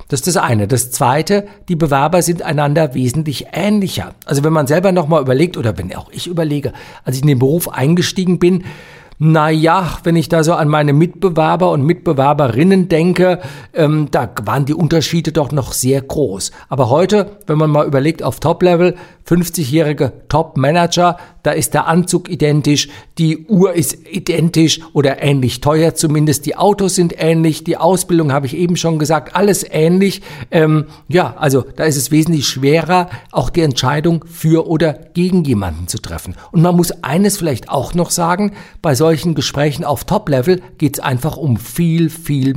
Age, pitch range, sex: 50-69, 145-175 Hz, male